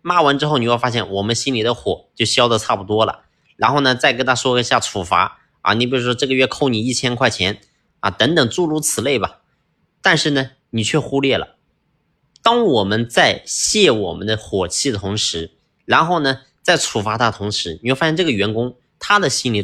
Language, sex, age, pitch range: Chinese, male, 30-49, 115-165 Hz